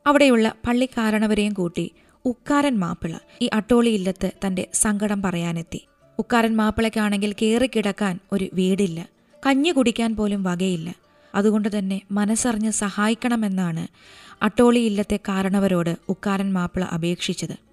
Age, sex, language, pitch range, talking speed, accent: 20-39, female, Malayalam, 195-245 Hz, 105 wpm, native